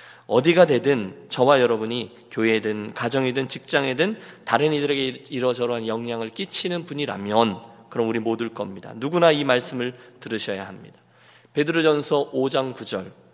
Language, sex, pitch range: Korean, male, 115-150 Hz